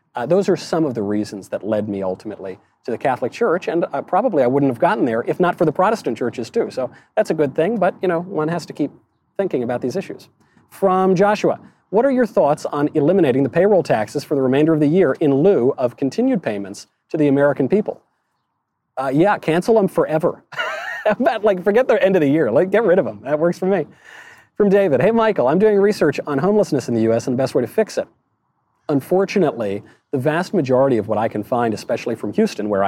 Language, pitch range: English, 115-185 Hz